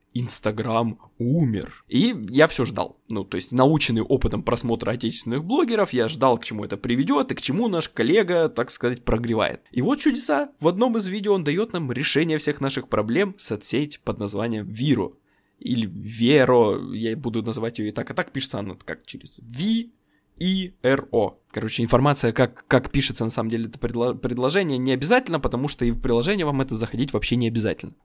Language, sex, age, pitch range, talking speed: Russian, male, 20-39, 115-160 Hz, 180 wpm